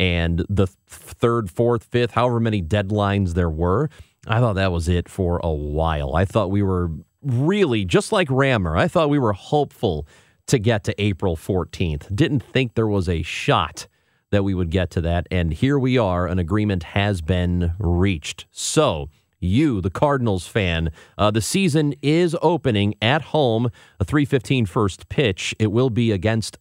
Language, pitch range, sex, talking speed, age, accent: English, 90-130 Hz, male, 175 wpm, 30-49, American